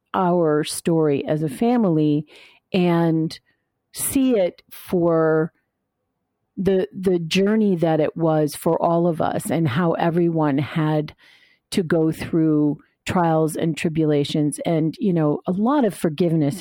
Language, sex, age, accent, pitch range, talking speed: English, female, 50-69, American, 150-180 Hz, 130 wpm